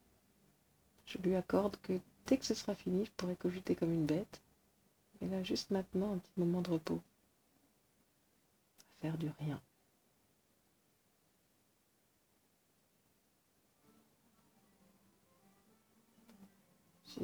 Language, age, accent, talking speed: French, 50-69, French, 95 wpm